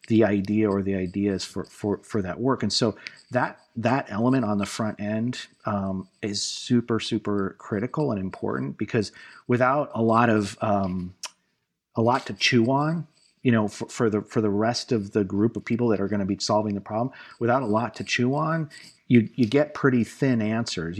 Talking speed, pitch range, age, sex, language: 200 wpm, 100-120 Hz, 40-59, male, English